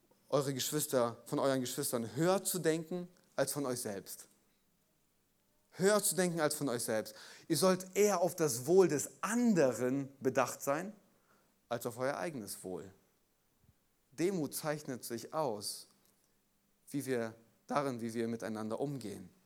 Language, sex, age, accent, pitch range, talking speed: German, male, 30-49, German, 130-170 Hz, 140 wpm